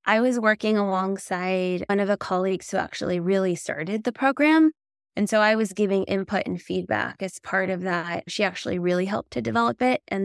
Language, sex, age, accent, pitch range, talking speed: English, female, 20-39, American, 185-215 Hz, 200 wpm